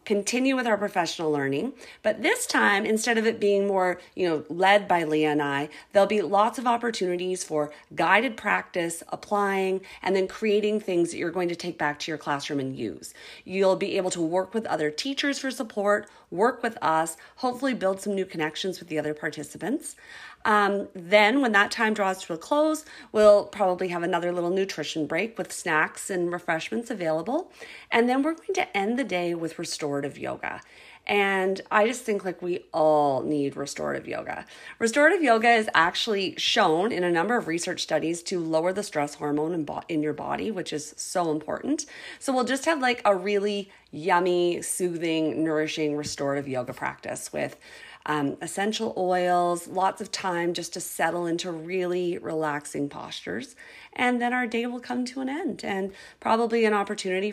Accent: American